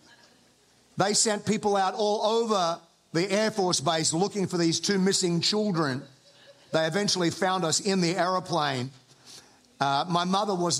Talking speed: 145 wpm